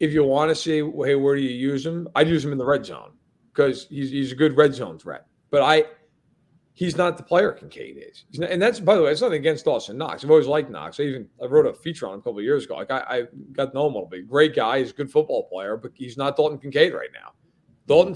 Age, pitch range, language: 40-59, 140-165 Hz, English